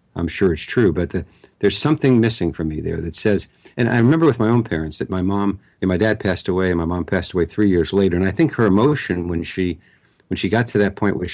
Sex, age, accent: male, 60-79, American